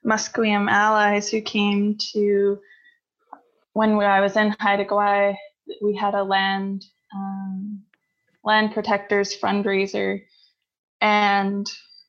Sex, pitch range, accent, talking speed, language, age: female, 200-215 Hz, American, 100 wpm, English, 20-39